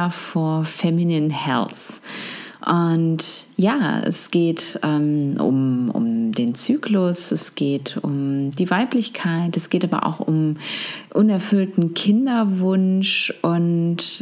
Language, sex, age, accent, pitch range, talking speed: German, female, 30-49, German, 160-205 Hz, 105 wpm